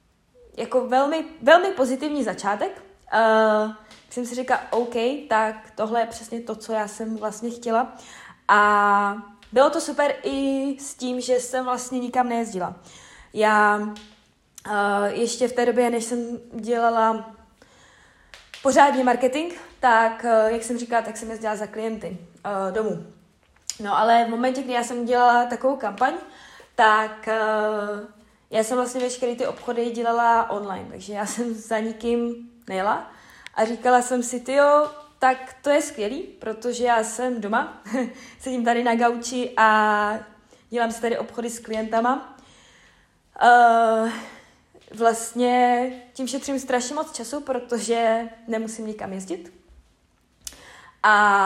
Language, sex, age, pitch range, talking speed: Czech, female, 20-39, 220-250 Hz, 135 wpm